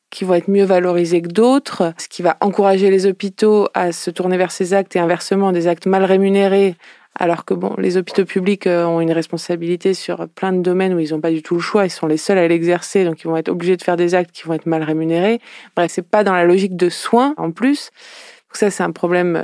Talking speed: 245 wpm